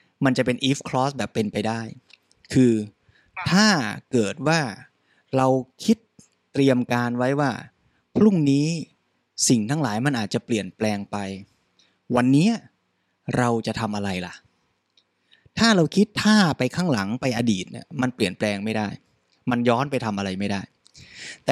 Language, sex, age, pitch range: Thai, male, 20-39, 115-150 Hz